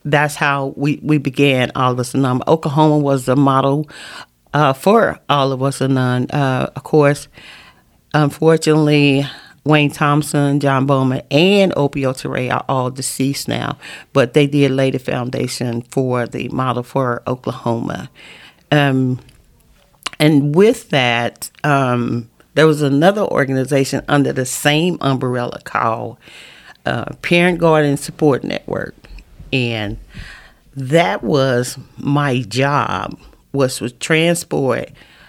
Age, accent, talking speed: 40-59, American, 125 wpm